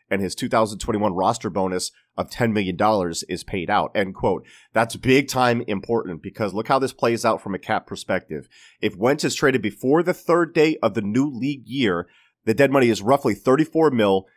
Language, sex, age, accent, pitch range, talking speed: English, male, 30-49, American, 100-125 Hz, 195 wpm